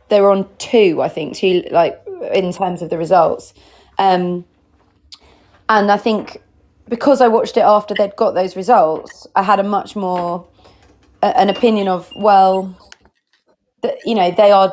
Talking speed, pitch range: 160 wpm, 185-230 Hz